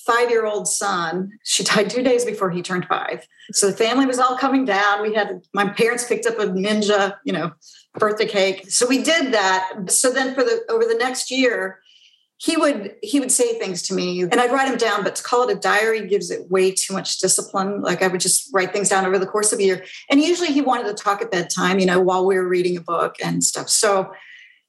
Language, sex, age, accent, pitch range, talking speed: English, female, 50-69, American, 195-250 Hz, 240 wpm